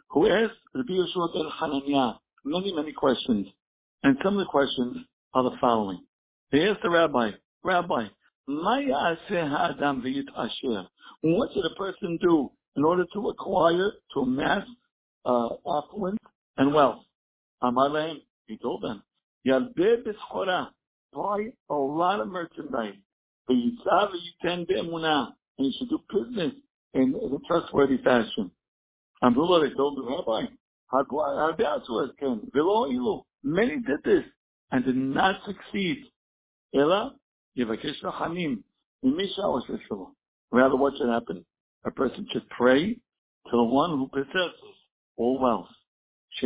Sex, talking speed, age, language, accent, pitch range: male, 115 wpm, 60-79, English, American, 130-195 Hz